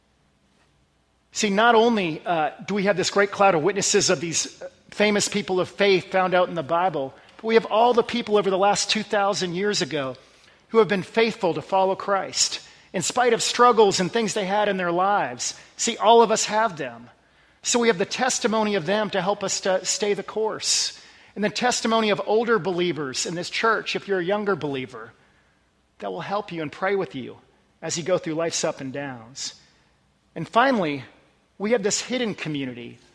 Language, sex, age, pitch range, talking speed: English, male, 40-59, 170-215 Hz, 200 wpm